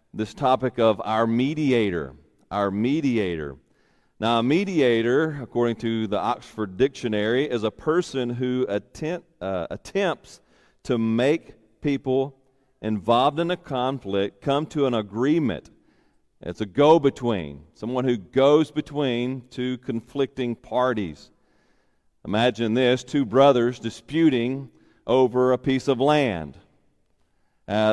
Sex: male